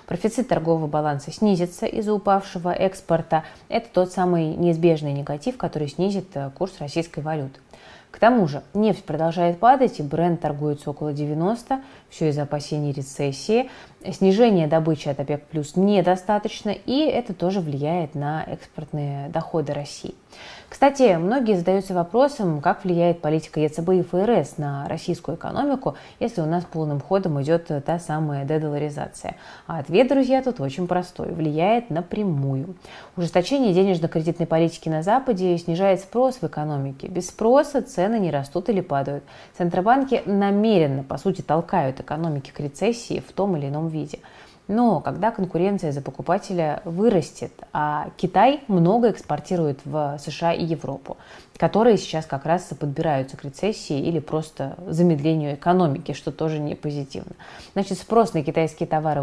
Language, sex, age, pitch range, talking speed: Russian, female, 20-39, 150-195 Hz, 140 wpm